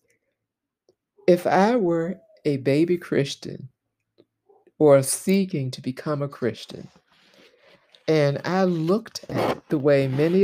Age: 50-69